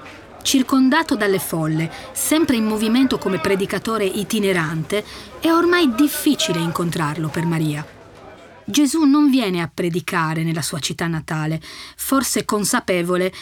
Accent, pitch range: native, 170-260 Hz